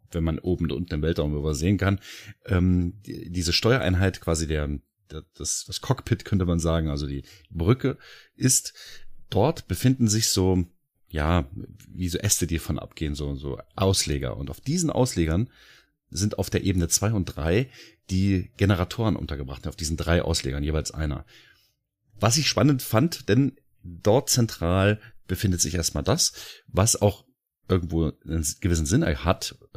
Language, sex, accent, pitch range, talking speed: German, male, German, 80-110 Hz, 155 wpm